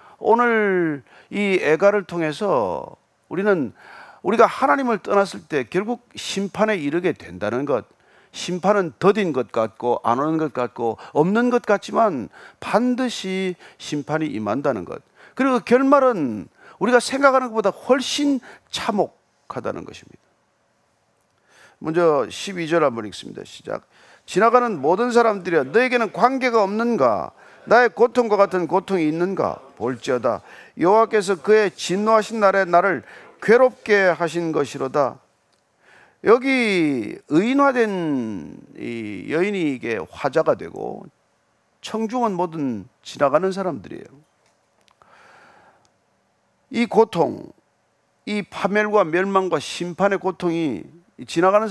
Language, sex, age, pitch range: Korean, male, 40-59, 175-240 Hz